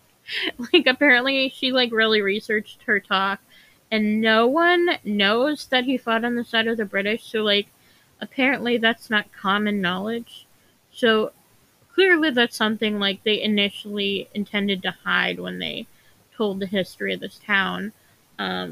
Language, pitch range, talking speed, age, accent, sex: English, 205-235 Hz, 150 wpm, 20-39, American, female